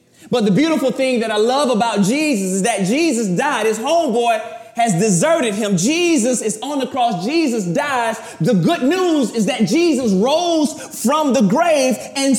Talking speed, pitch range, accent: 175 wpm, 215-265 Hz, American